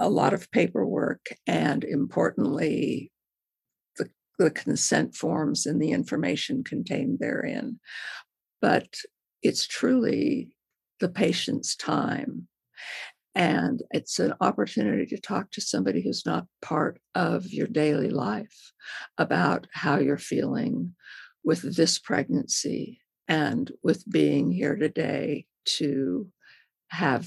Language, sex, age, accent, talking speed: English, female, 60-79, American, 110 wpm